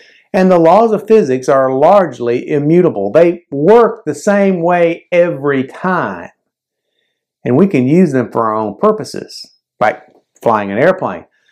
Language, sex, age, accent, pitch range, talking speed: English, male, 50-69, American, 125-175 Hz, 145 wpm